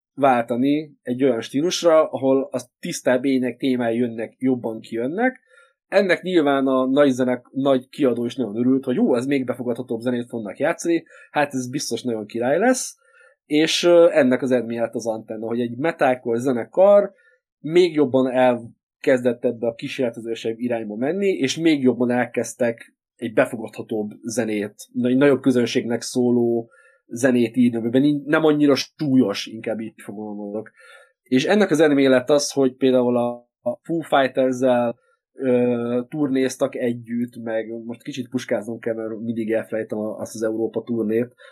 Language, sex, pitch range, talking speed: Hungarian, male, 120-145 Hz, 145 wpm